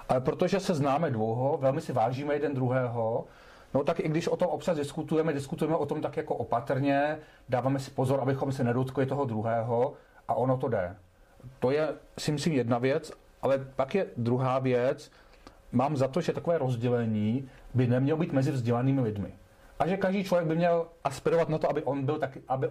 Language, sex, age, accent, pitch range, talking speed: Czech, male, 40-59, native, 120-145 Hz, 195 wpm